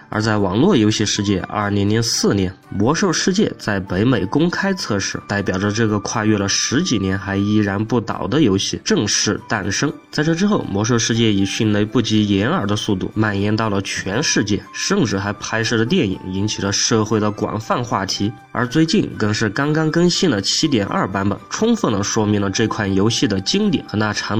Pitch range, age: 100-130 Hz, 20-39